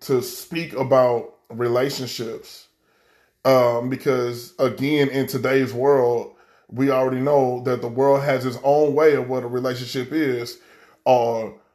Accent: American